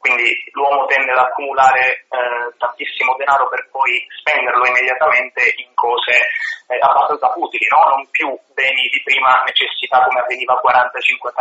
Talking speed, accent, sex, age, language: 140 wpm, native, male, 30-49, Italian